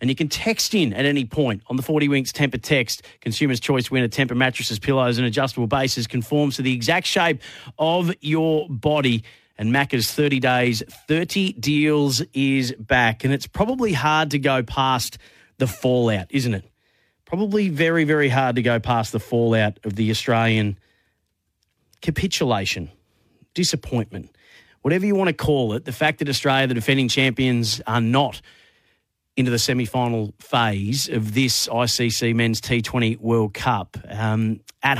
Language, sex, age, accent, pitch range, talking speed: English, male, 40-59, Australian, 115-140 Hz, 160 wpm